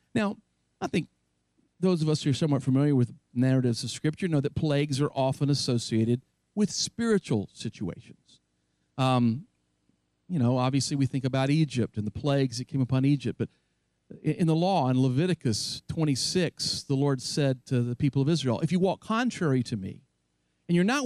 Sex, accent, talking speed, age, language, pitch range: male, American, 175 wpm, 50-69, English, 125-170 Hz